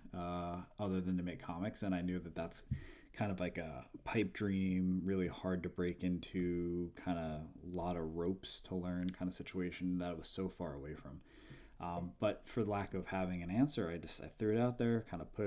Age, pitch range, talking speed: 20-39, 85-95 Hz, 225 wpm